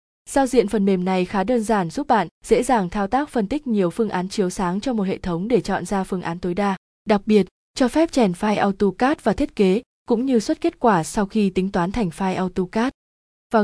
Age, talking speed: 20-39, 240 wpm